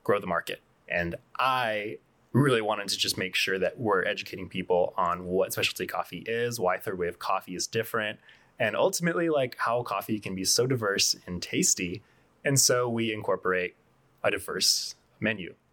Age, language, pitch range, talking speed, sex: 20-39, English, 95-125 Hz, 170 wpm, male